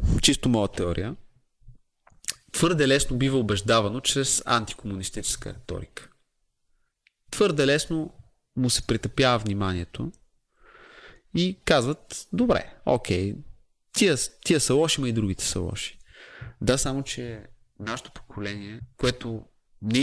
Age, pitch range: 30-49, 100-125 Hz